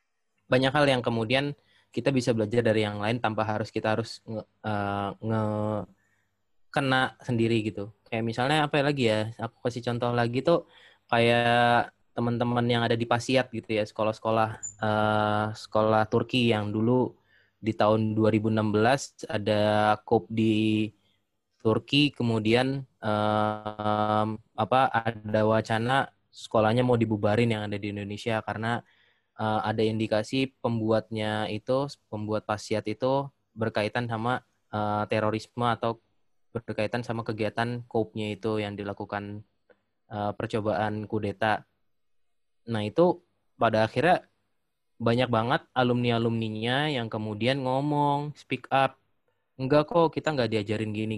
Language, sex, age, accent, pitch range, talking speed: Indonesian, male, 20-39, native, 105-120 Hz, 120 wpm